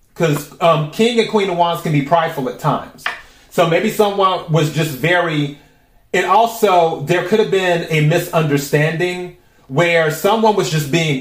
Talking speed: 160 wpm